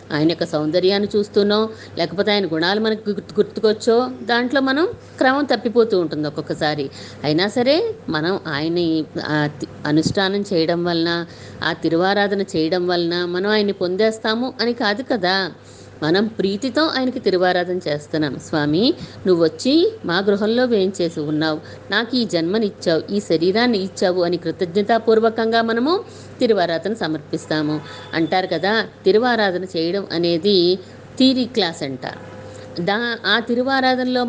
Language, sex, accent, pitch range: Telugu, female, native, 170-220 Hz